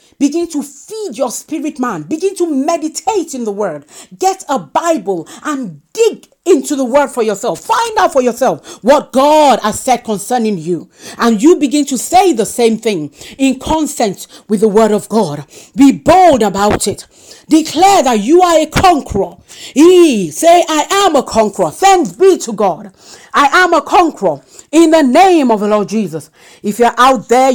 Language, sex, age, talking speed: English, female, 40-59, 180 wpm